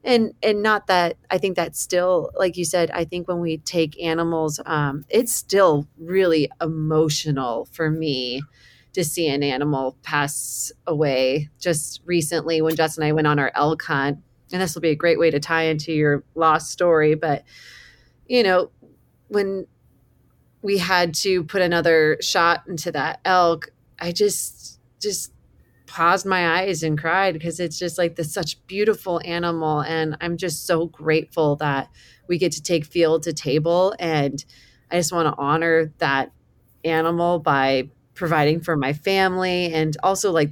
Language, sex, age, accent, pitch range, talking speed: English, female, 30-49, American, 155-180 Hz, 165 wpm